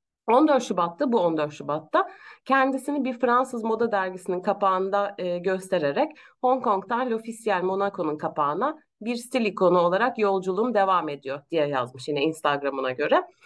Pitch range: 180-275 Hz